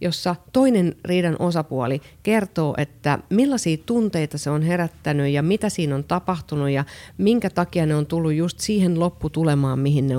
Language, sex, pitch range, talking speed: Finnish, female, 145-200 Hz, 160 wpm